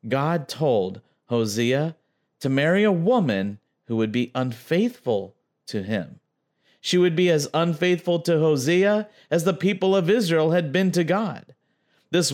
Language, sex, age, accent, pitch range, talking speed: English, male, 40-59, American, 125-195 Hz, 145 wpm